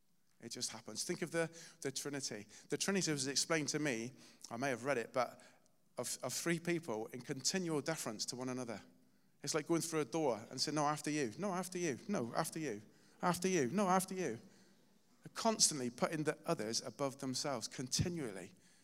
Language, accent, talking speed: English, British, 190 wpm